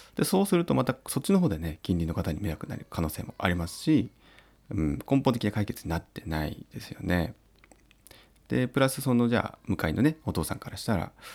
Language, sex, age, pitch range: Japanese, male, 30-49, 85-120 Hz